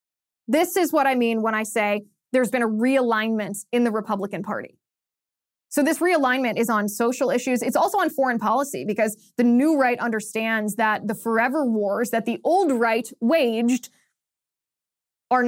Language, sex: English, female